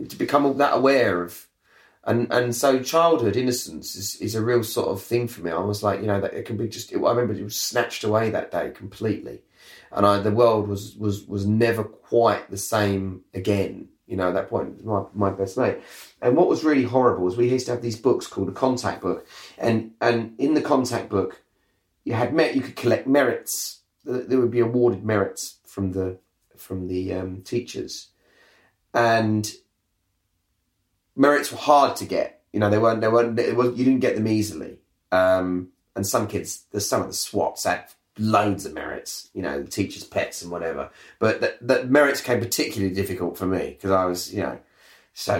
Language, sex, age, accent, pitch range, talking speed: English, male, 30-49, British, 95-120 Hz, 200 wpm